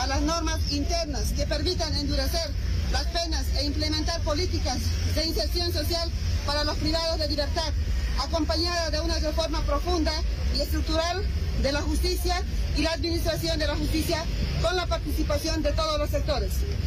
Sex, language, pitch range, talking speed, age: female, Spanish, 80-95 Hz, 155 wpm, 40-59